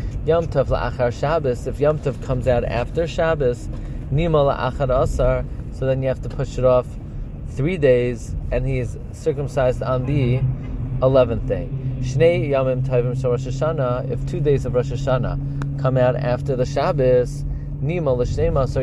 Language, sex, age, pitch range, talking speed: English, male, 30-49, 120-145 Hz, 165 wpm